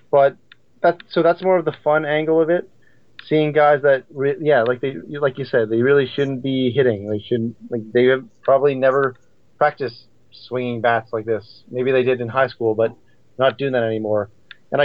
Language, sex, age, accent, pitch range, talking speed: English, male, 20-39, American, 120-145 Hz, 200 wpm